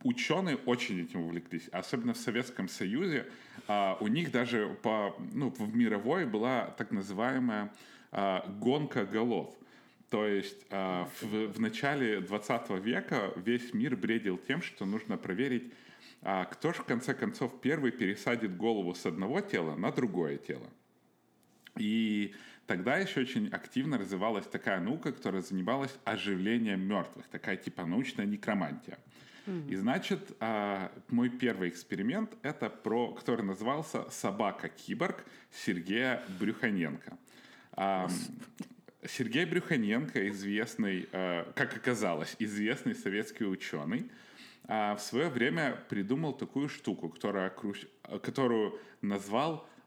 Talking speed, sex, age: 120 wpm, male, 30-49